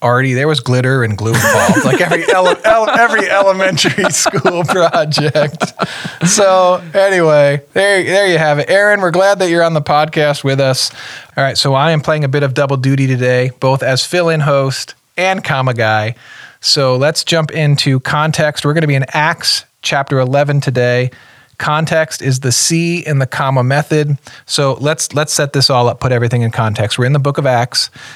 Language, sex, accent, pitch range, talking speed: English, male, American, 130-160 Hz, 190 wpm